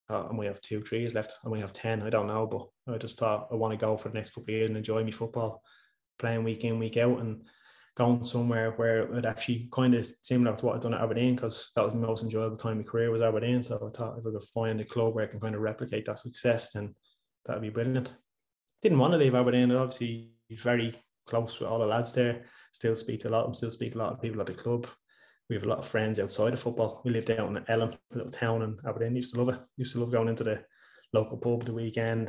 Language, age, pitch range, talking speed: English, 20-39, 110-120 Hz, 275 wpm